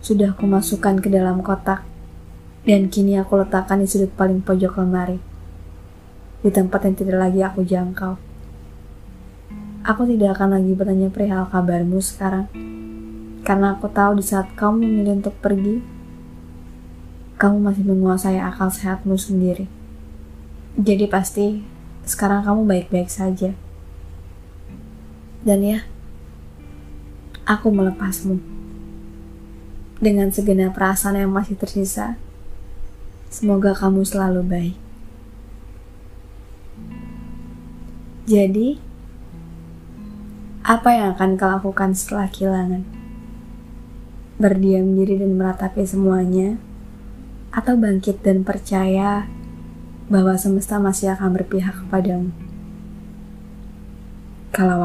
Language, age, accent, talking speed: Indonesian, 20-39, native, 95 wpm